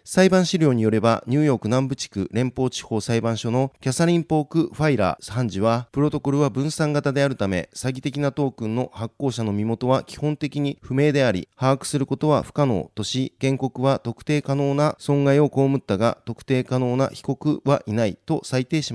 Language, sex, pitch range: Japanese, male, 115-145 Hz